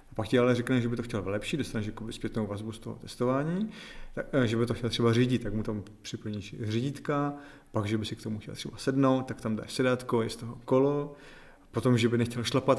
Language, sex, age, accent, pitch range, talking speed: Czech, male, 30-49, native, 115-140 Hz, 230 wpm